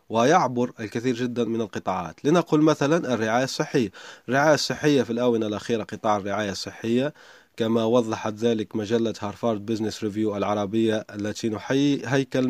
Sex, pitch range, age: male, 115-155 Hz, 30-49